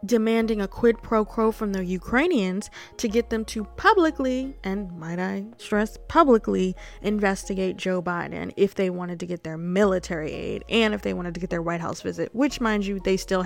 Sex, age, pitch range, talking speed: female, 20-39, 190-285 Hz, 195 wpm